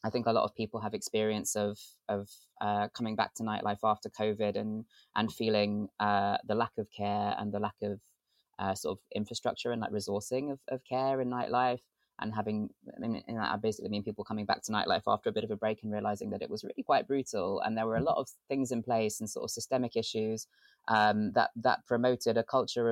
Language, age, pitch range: English, 20-39, 105-120 Hz